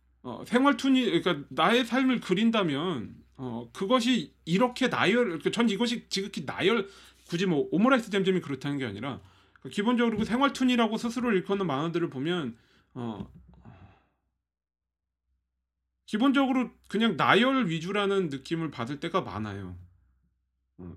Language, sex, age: Korean, male, 30-49